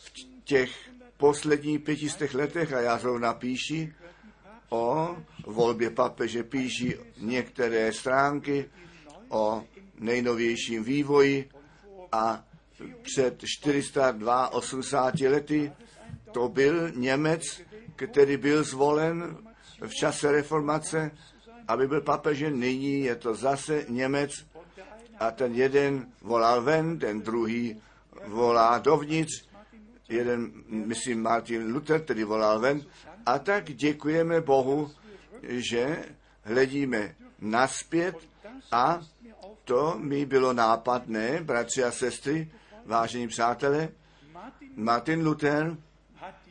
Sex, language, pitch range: male, Czech, 120-160 Hz